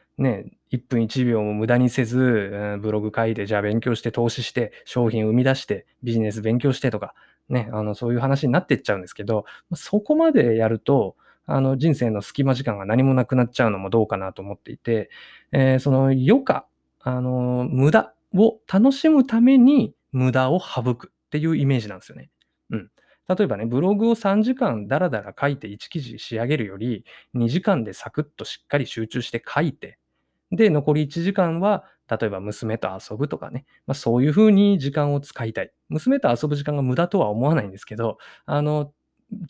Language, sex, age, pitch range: Japanese, male, 20-39, 115-160 Hz